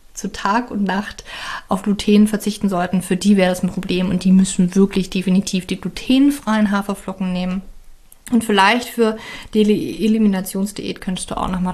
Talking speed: 165 wpm